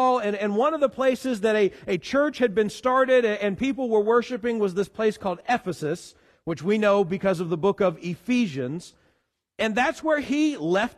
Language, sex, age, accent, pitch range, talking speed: English, male, 40-59, American, 205-260 Hz, 195 wpm